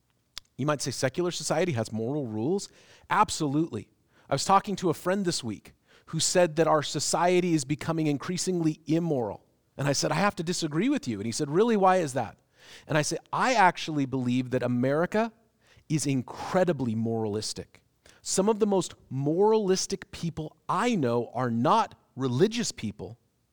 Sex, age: male, 40-59